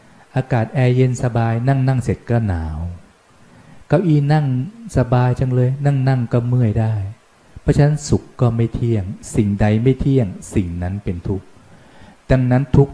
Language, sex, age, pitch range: Thai, male, 20-39, 100-130 Hz